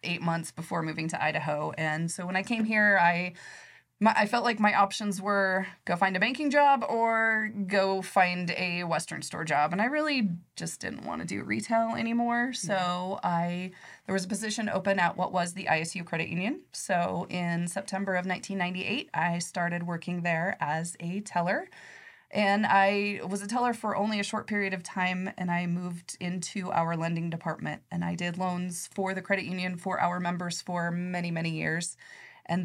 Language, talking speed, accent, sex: English, 190 wpm, American, female